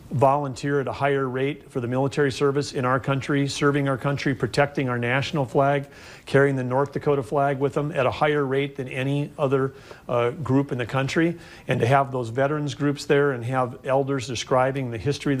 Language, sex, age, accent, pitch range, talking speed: English, male, 40-59, American, 125-140 Hz, 205 wpm